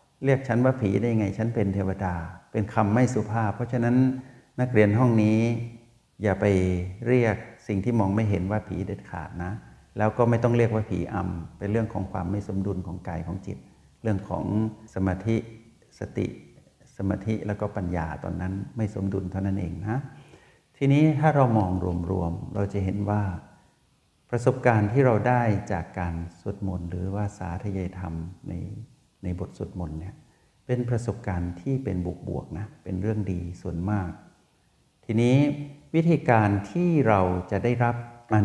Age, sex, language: 60-79, male, Thai